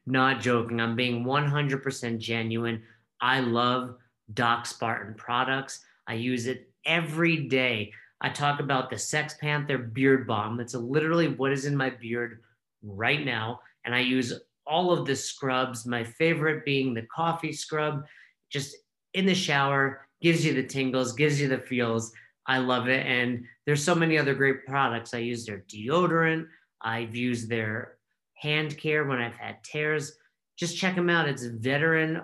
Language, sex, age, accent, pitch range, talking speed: English, male, 30-49, American, 120-145 Hz, 165 wpm